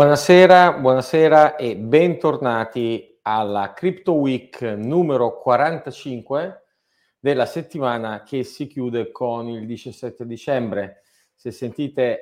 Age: 40-59